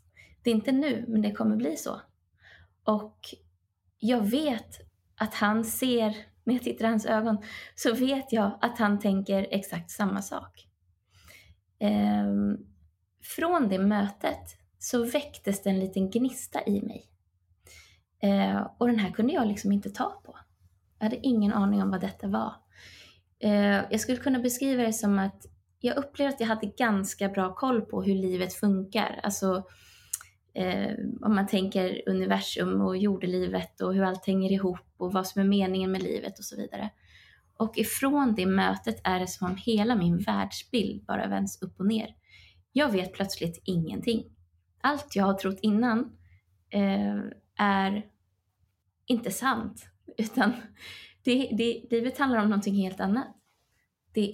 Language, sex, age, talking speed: Swedish, female, 20-39, 150 wpm